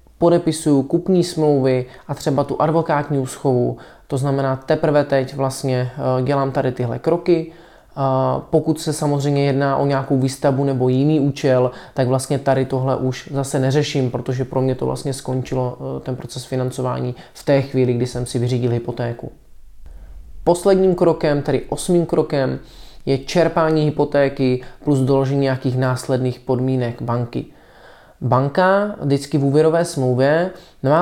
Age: 20-39